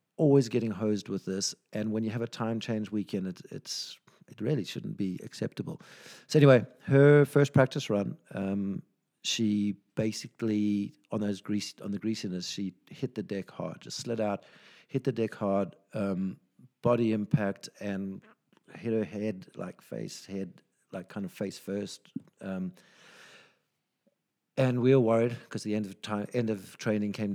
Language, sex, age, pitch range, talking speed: English, male, 50-69, 95-115 Hz, 165 wpm